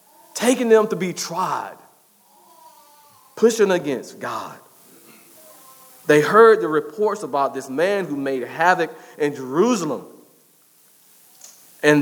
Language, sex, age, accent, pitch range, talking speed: English, male, 40-59, American, 155-235 Hz, 105 wpm